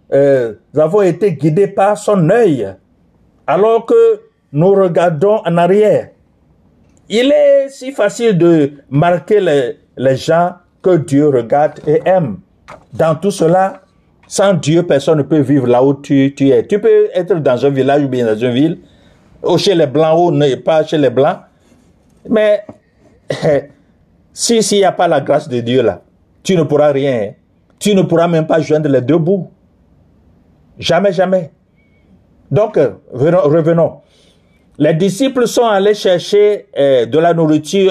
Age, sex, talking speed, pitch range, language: 50-69, male, 155 wpm, 150-205 Hz, French